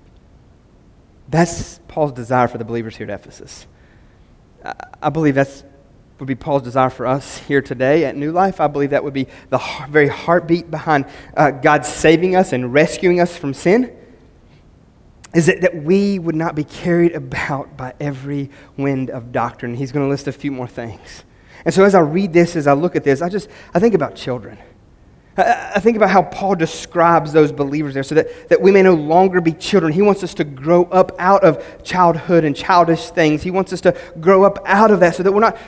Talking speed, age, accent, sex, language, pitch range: 210 wpm, 30-49, American, male, English, 140-185 Hz